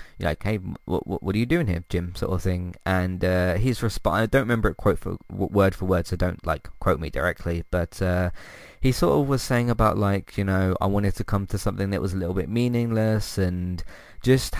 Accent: British